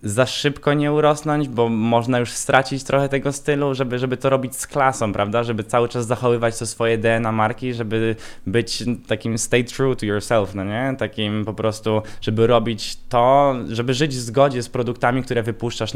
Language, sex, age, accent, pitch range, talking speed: Polish, male, 20-39, native, 110-130 Hz, 185 wpm